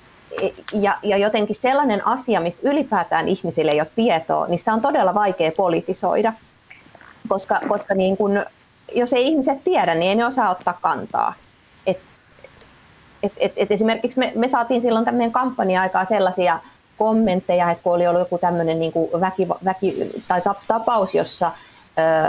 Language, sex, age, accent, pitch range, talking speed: Finnish, female, 30-49, native, 160-225 Hz, 145 wpm